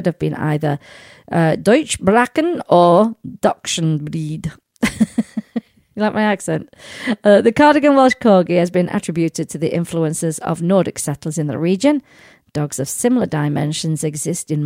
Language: English